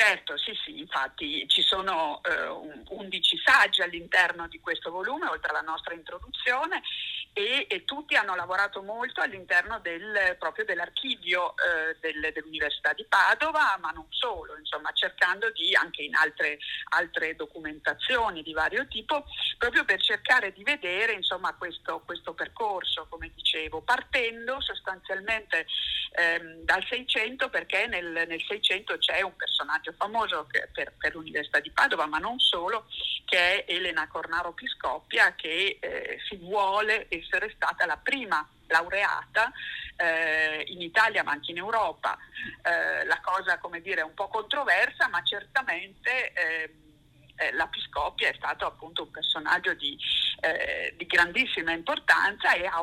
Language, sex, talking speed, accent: Italian, female, 140 wpm, native